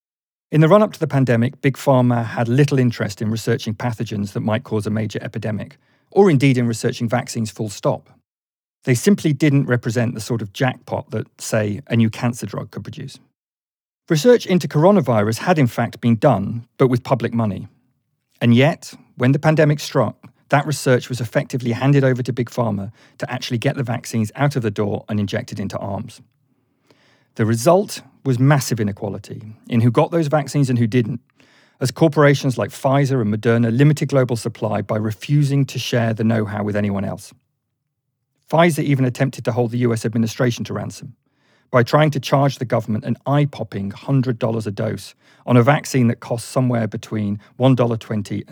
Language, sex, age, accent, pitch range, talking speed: English, male, 40-59, British, 110-135 Hz, 175 wpm